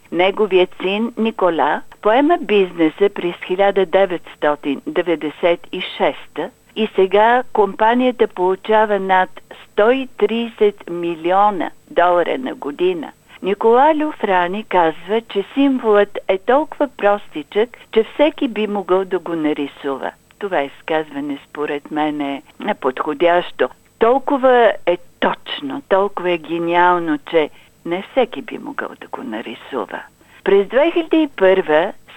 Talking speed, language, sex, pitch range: 100 wpm, Bulgarian, female, 170-230 Hz